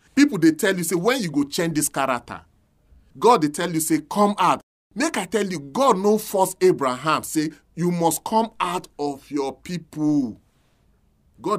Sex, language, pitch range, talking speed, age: male, English, 145-205 Hz, 180 wpm, 30-49